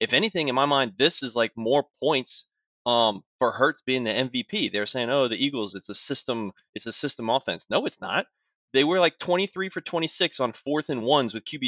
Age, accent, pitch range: 20-39, American, 100-130 Hz